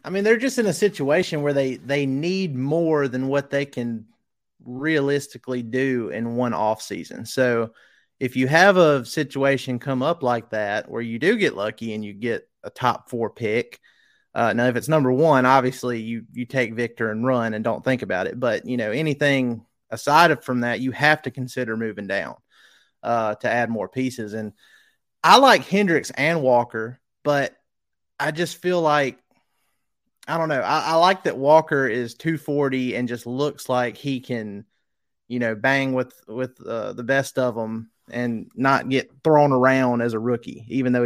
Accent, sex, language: American, male, English